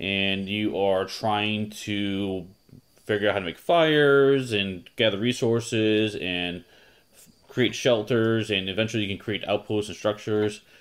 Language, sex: English, male